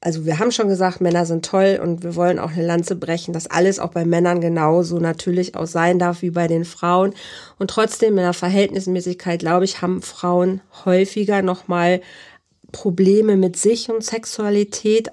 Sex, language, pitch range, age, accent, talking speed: female, German, 170-195 Hz, 40-59, German, 185 wpm